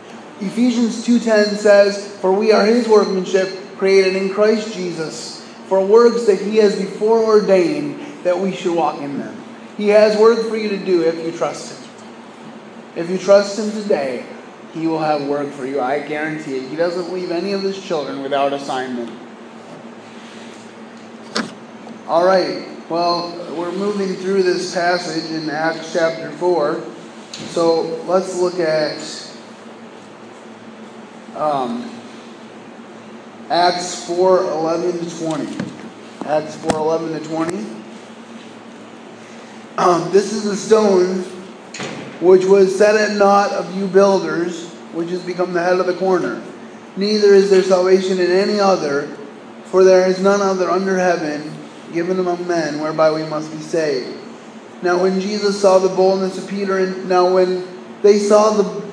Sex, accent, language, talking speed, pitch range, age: male, American, English, 145 wpm, 165-200 Hz, 30-49